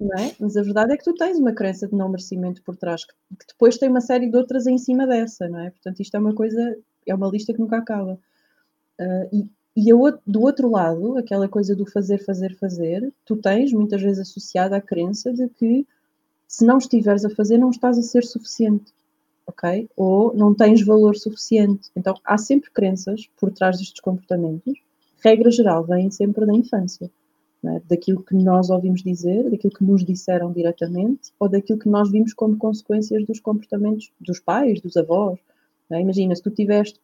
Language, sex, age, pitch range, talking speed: Portuguese, female, 30-49, 185-225 Hz, 195 wpm